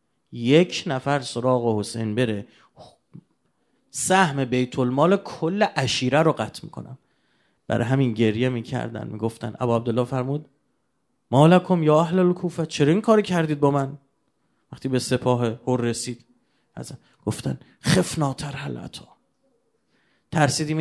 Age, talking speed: 30-49, 115 wpm